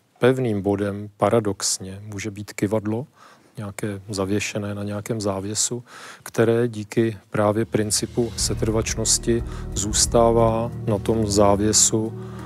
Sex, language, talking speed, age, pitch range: male, Czech, 95 wpm, 40-59, 105-115 Hz